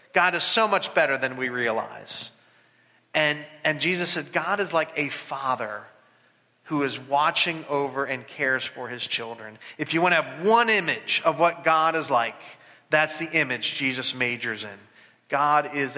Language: English